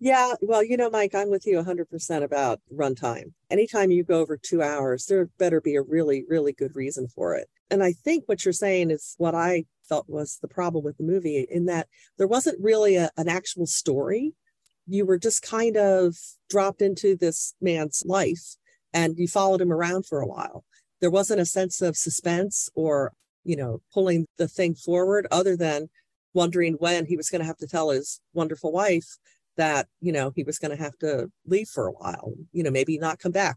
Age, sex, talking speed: 40-59, female, 205 wpm